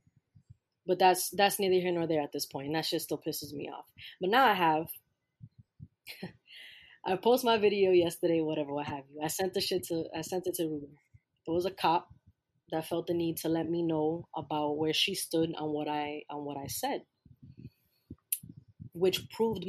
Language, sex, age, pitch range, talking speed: English, female, 20-39, 155-235 Hz, 200 wpm